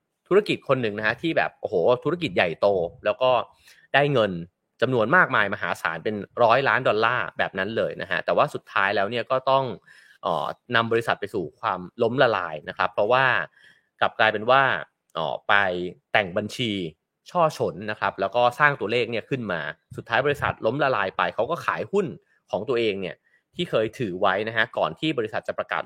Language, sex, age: English, male, 30-49